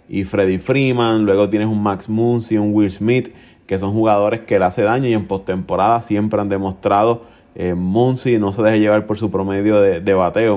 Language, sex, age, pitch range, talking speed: Spanish, male, 20-39, 100-120 Hz, 205 wpm